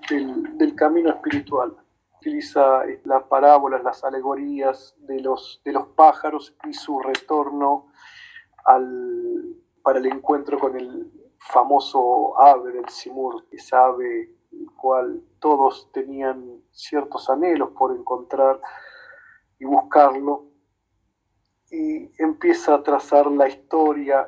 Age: 40-59